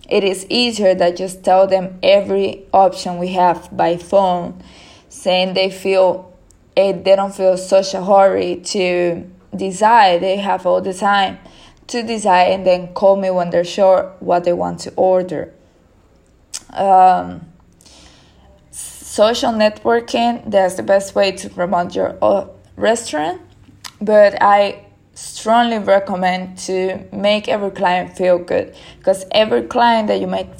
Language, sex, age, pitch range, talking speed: English, female, 20-39, 180-200 Hz, 140 wpm